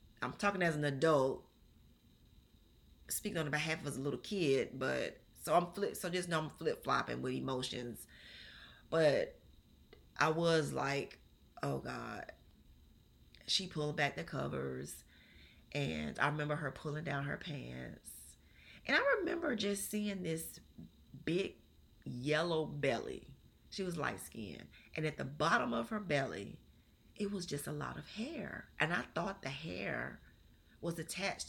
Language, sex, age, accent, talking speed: English, female, 30-49, American, 145 wpm